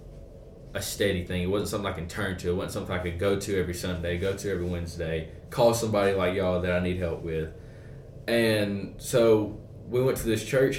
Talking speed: 215 wpm